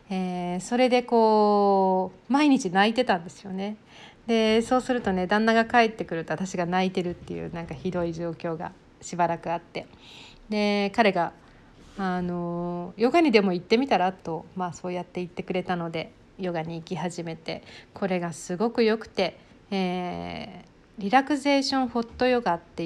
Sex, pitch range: female, 180-225 Hz